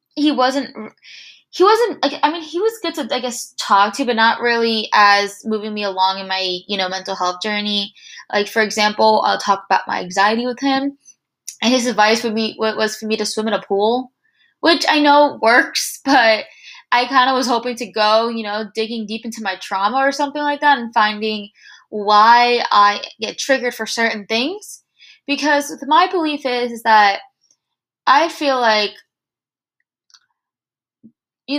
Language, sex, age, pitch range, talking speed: English, female, 20-39, 210-270 Hz, 180 wpm